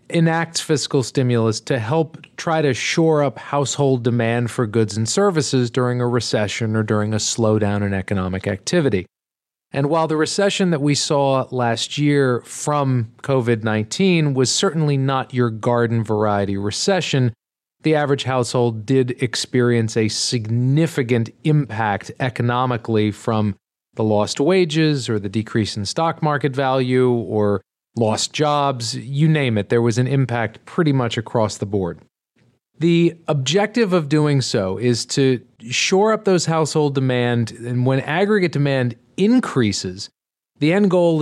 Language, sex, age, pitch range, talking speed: English, male, 40-59, 115-150 Hz, 145 wpm